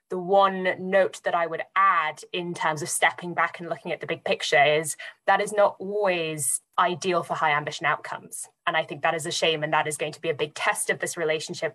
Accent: British